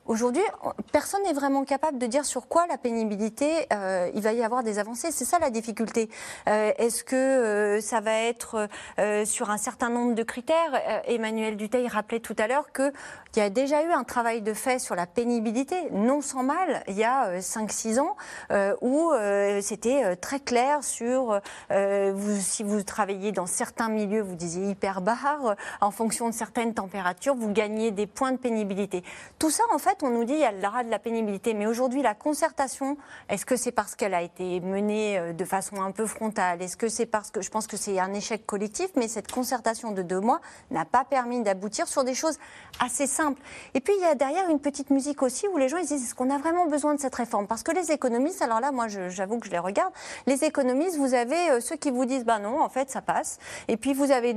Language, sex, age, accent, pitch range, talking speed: French, female, 30-49, French, 210-280 Hz, 225 wpm